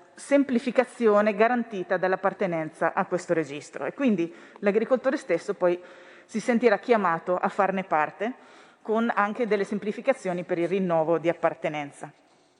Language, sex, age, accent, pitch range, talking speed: Italian, female, 40-59, native, 175-215 Hz, 125 wpm